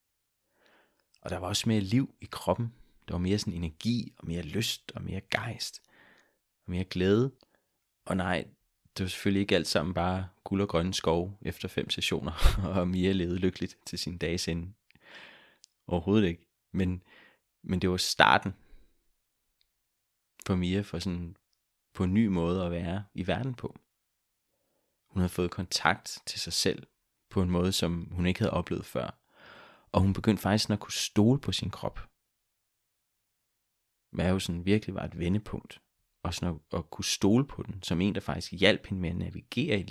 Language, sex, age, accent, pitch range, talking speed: Danish, male, 20-39, native, 85-105 Hz, 175 wpm